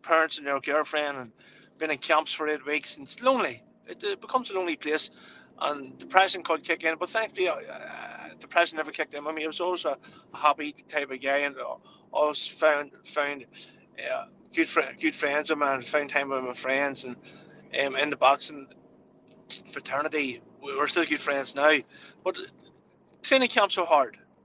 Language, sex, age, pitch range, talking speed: English, male, 30-49, 145-175 Hz, 190 wpm